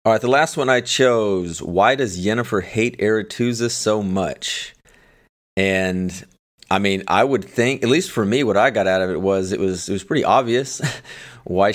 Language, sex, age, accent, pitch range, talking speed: English, male, 30-49, American, 95-115 Hz, 195 wpm